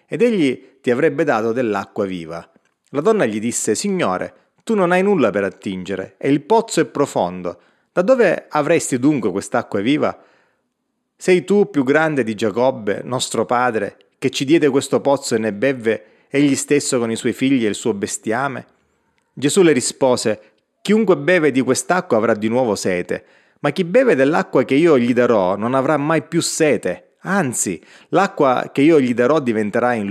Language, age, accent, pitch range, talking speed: Italian, 30-49, native, 115-160 Hz, 175 wpm